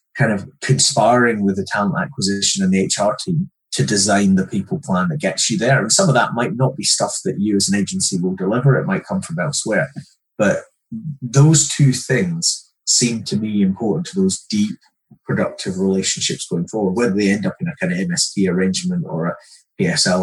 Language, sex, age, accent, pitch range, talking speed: English, male, 20-39, British, 105-175 Hz, 200 wpm